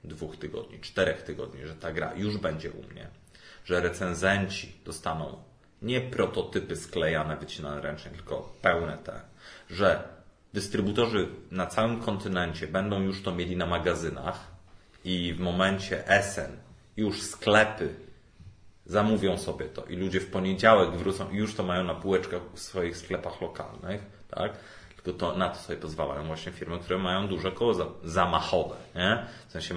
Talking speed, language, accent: 145 wpm, Polish, native